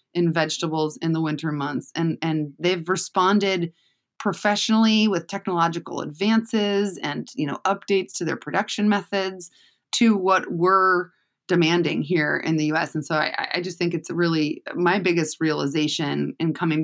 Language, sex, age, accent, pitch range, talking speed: English, female, 20-39, American, 155-195 Hz, 155 wpm